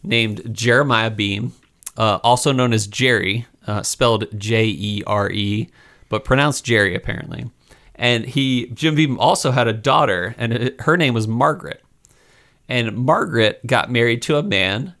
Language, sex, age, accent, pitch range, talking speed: English, male, 30-49, American, 110-135 Hz, 140 wpm